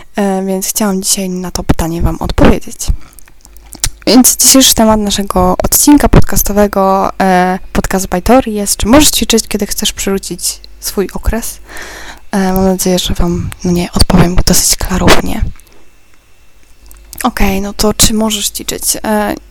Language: Polish